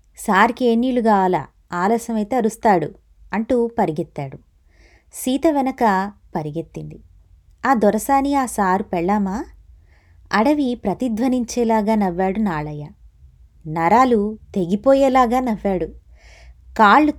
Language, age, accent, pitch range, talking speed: Telugu, 20-39, native, 155-225 Hz, 80 wpm